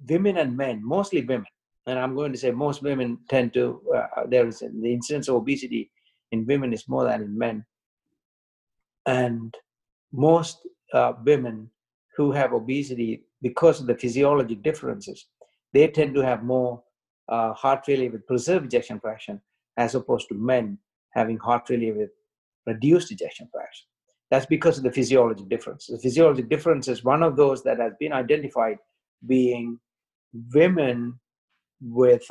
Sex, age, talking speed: male, 60-79, 155 wpm